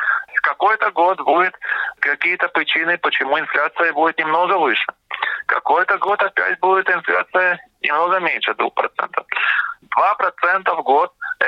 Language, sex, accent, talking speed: Russian, male, native, 115 wpm